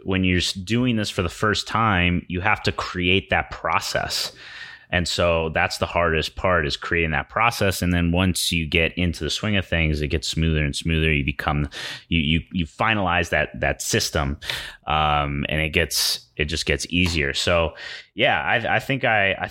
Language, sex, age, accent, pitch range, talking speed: English, male, 30-49, American, 75-95 Hz, 195 wpm